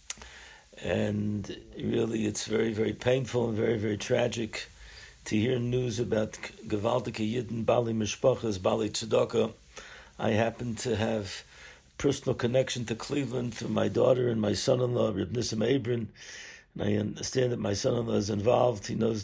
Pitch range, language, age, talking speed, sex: 105-130 Hz, English, 60-79, 155 wpm, male